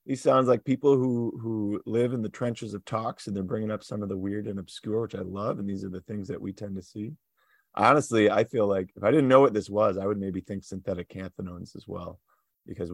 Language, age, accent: English, 30-49, American